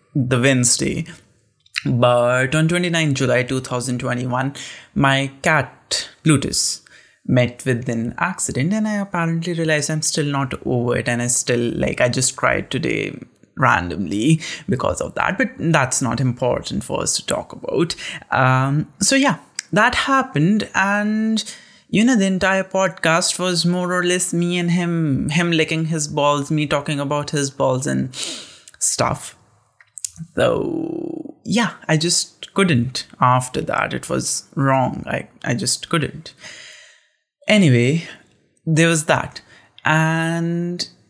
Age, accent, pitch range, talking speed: 30-49, Indian, 130-175 Hz, 135 wpm